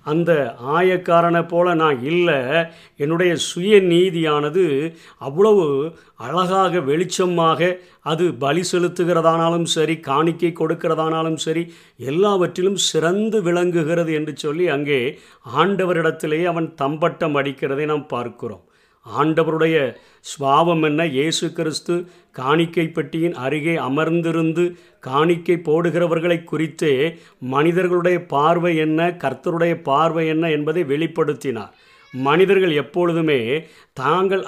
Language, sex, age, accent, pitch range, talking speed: Tamil, male, 50-69, native, 150-175 Hz, 90 wpm